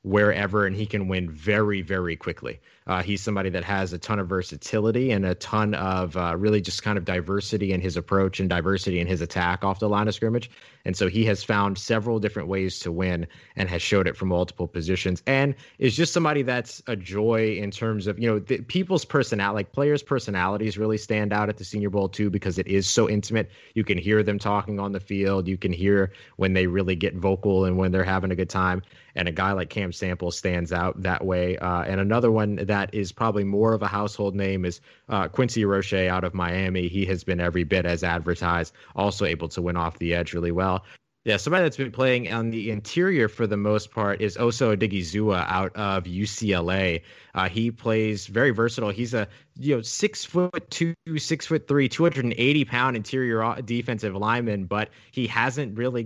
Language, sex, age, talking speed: English, male, 30-49, 215 wpm